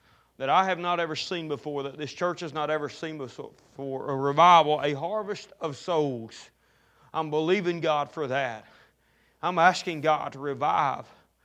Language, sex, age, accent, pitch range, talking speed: English, male, 30-49, American, 160-235 Hz, 160 wpm